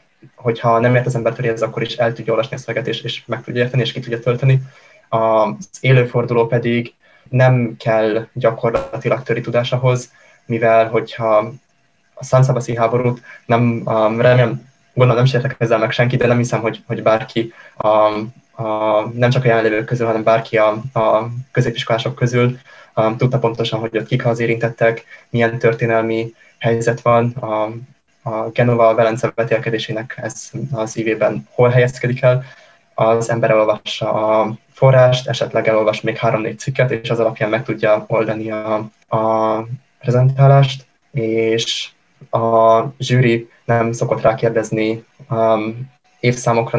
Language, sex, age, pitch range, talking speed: Hungarian, male, 20-39, 110-125 Hz, 140 wpm